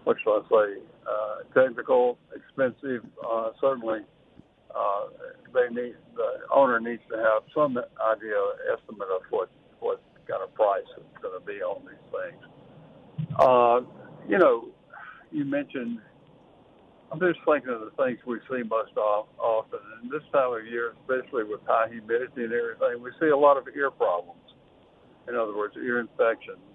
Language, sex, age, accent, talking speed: English, male, 60-79, American, 155 wpm